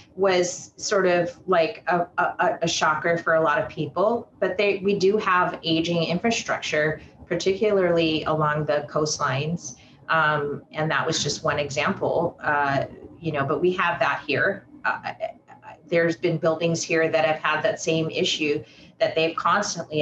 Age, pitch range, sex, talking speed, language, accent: 30-49, 155-190 Hz, female, 160 wpm, English, American